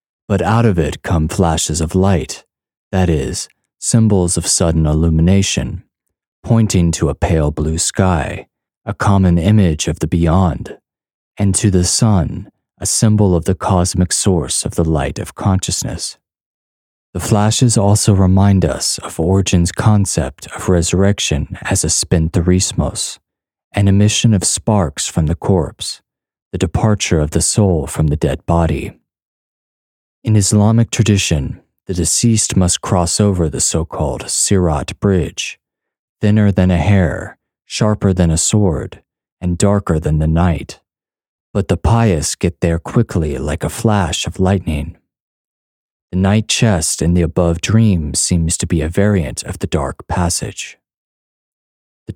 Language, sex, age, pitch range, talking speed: English, male, 30-49, 80-105 Hz, 140 wpm